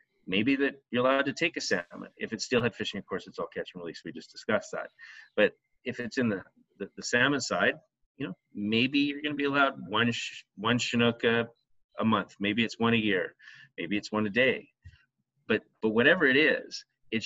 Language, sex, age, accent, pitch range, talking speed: English, male, 30-49, American, 100-125 Hz, 220 wpm